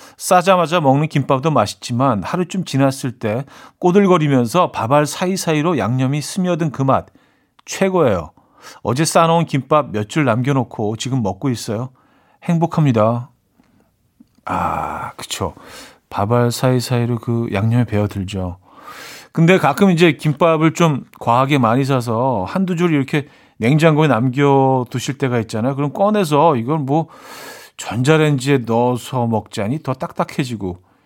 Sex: male